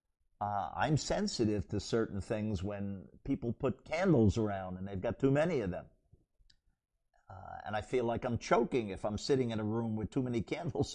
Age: 50-69